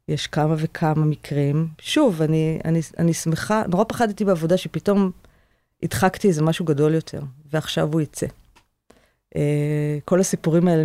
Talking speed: 135 wpm